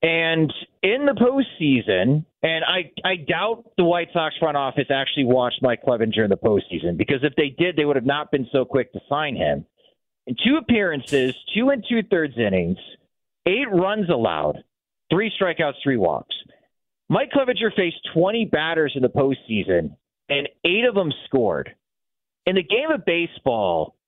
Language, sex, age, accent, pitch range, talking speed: English, male, 40-59, American, 135-180 Hz, 165 wpm